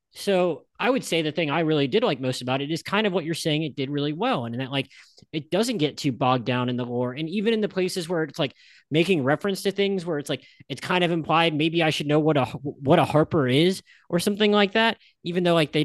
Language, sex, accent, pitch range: English, male, American, 140-175 Hz